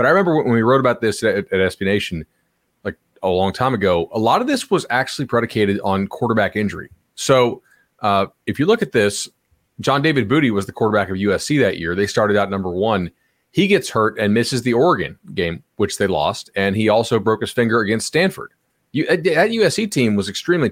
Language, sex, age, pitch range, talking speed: English, male, 30-49, 100-125 Hz, 215 wpm